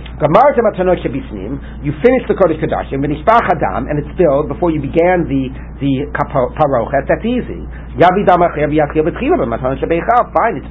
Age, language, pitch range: 60-79, English, 140-180 Hz